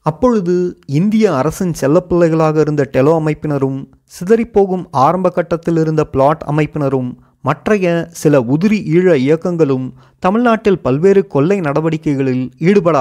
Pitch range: 145-195 Hz